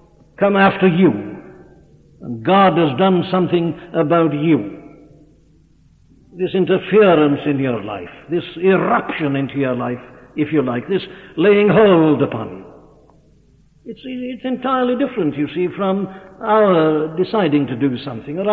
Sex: male